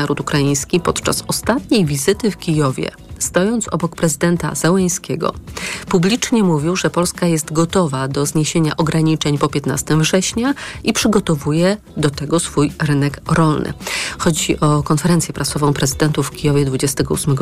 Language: Polish